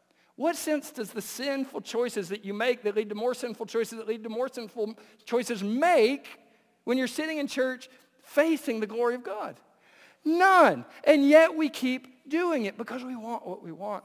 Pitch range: 180-255 Hz